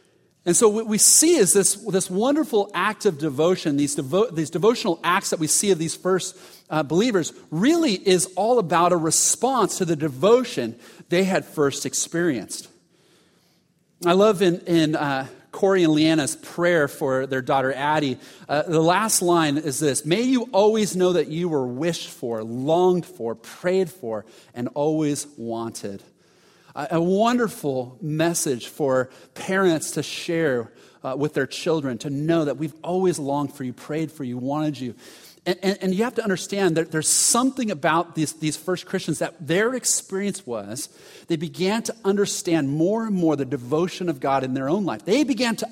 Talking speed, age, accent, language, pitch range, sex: 175 wpm, 40-59, American, English, 145-190 Hz, male